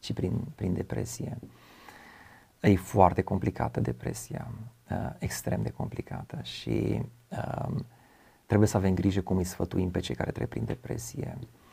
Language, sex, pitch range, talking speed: Romanian, male, 95-120 Hz, 130 wpm